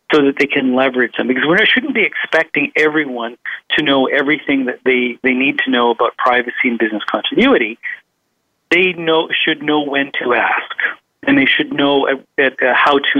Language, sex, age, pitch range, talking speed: English, male, 40-59, 130-165 Hz, 190 wpm